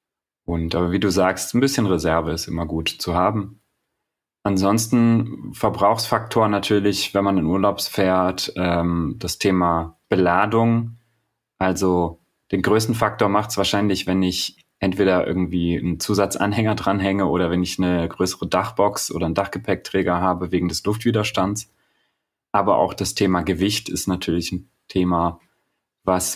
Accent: German